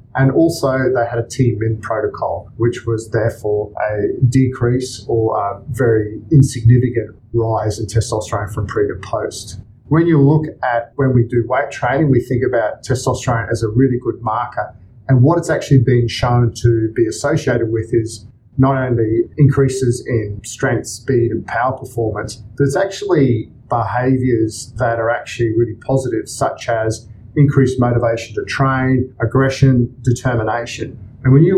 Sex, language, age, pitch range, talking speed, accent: male, English, 40-59, 110-130 Hz, 150 wpm, Australian